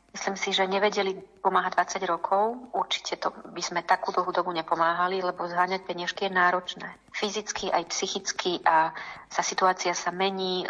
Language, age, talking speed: Slovak, 40-59, 155 wpm